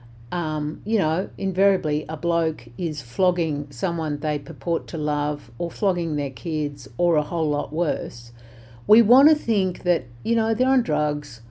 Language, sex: English, female